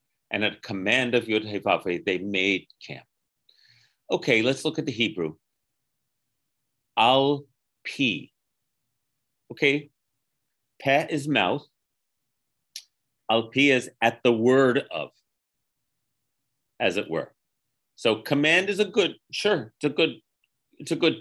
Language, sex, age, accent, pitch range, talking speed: English, male, 40-59, American, 115-140 Hz, 120 wpm